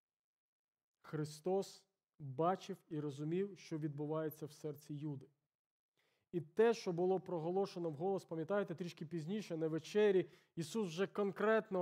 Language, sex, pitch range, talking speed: Ukrainian, male, 170-230 Hz, 115 wpm